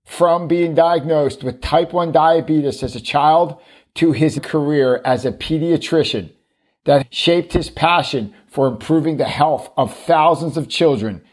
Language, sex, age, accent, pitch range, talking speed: English, male, 50-69, American, 135-165 Hz, 150 wpm